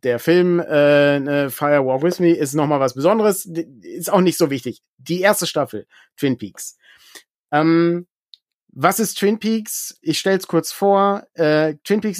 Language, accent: German, German